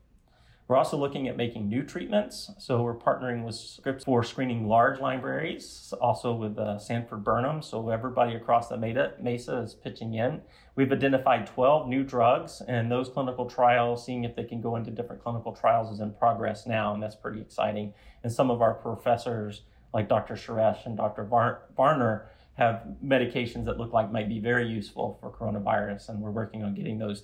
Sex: male